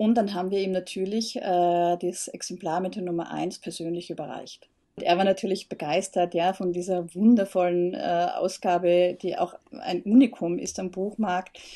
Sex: female